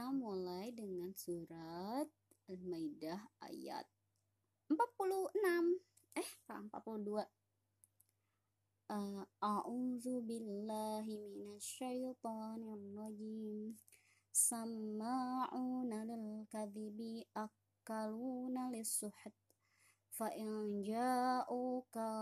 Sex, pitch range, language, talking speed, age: male, 215-240 Hz, Indonesian, 60 wpm, 20-39